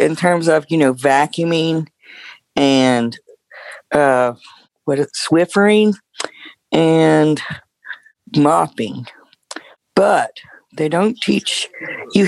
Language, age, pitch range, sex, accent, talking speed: English, 50-69, 120-155 Hz, female, American, 90 wpm